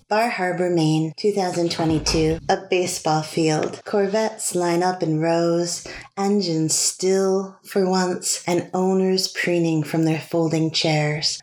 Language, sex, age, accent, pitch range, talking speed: English, female, 20-39, American, 145-180 Hz, 120 wpm